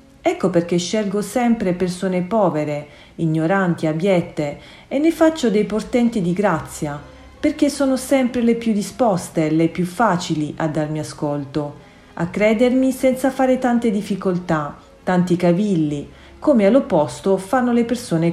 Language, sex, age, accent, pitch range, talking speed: Italian, female, 40-59, native, 160-230 Hz, 130 wpm